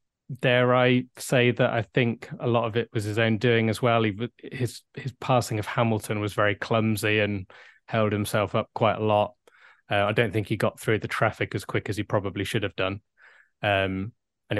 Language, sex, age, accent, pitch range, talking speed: English, male, 20-39, British, 105-120 Hz, 210 wpm